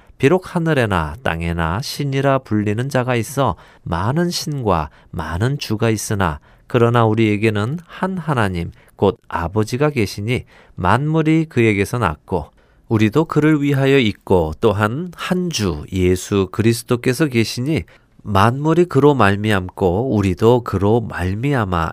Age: 40-59